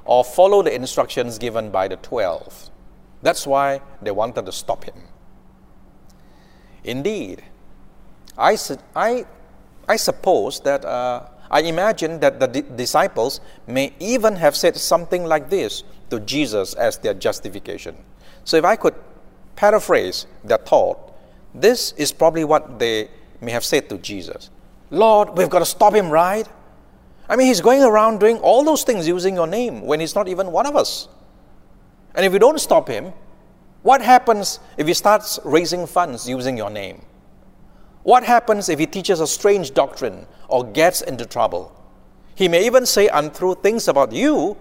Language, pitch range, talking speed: English, 140-210 Hz, 165 wpm